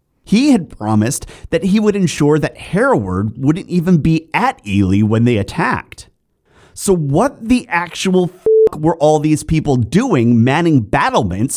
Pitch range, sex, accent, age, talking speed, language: 95-155 Hz, male, American, 30-49, 150 wpm, English